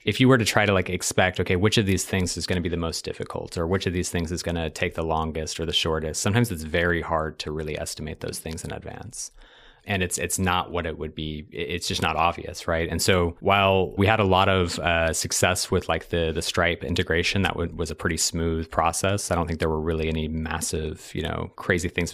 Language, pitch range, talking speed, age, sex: English, 80-95 Hz, 250 wpm, 30-49, male